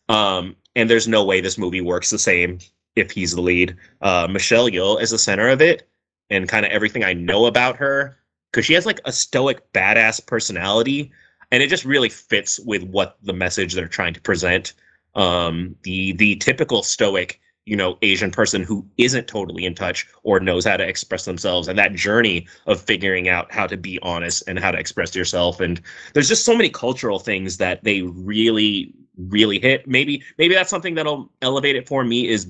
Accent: American